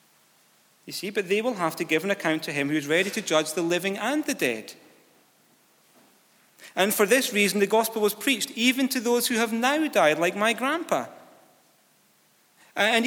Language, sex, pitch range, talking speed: English, male, 150-235 Hz, 190 wpm